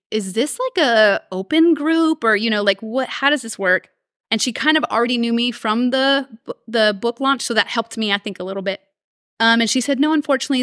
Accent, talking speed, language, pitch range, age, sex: American, 235 wpm, English, 195-245 Hz, 30-49, female